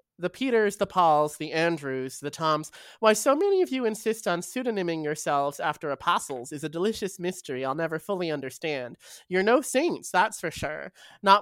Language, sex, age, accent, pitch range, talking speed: English, male, 20-39, American, 150-180 Hz, 180 wpm